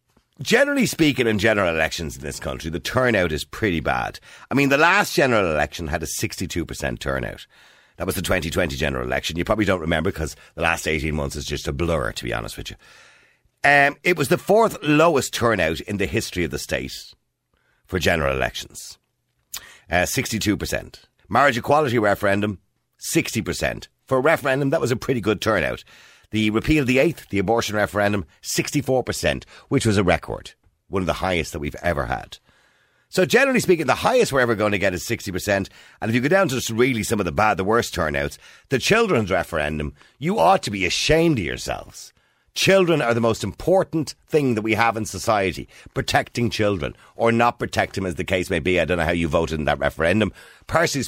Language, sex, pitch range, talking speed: English, male, 85-130 Hz, 195 wpm